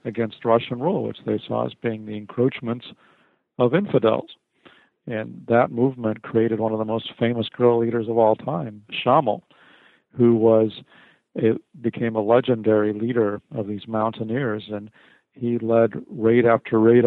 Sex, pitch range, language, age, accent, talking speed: male, 110-120 Hz, English, 50-69, American, 150 wpm